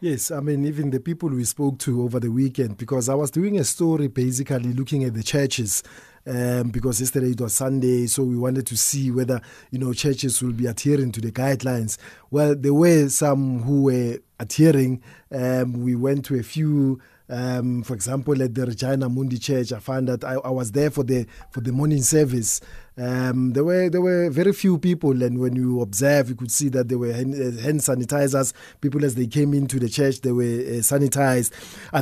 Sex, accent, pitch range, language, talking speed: male, South African, 125-150 Hz, English, 205 wpm